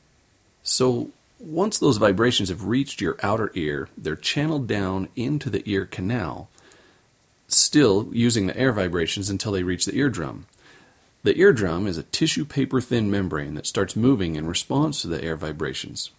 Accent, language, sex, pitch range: American, English, male, 85-120 Hz